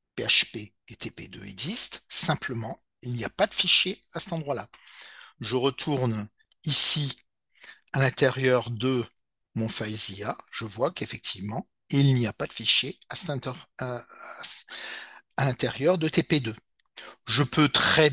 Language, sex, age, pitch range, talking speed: French, male, 50-69, 115-150 Hz, 130 wpm